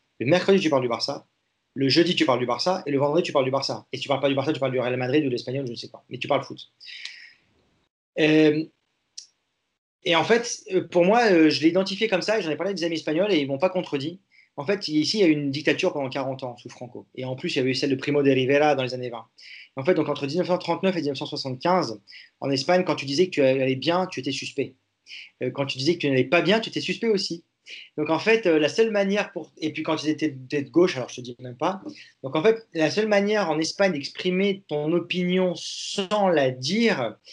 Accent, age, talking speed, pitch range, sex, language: French, 30-49, 260 wpm, 135-180 Hz, male, French